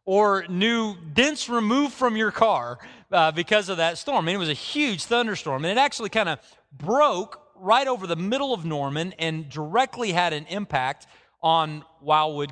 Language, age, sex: English, 30-49, male